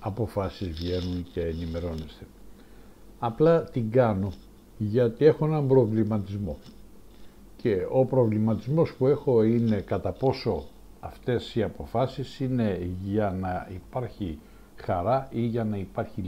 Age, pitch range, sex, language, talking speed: 60-79, 100-130 Hz, male, Greek, 115 wpm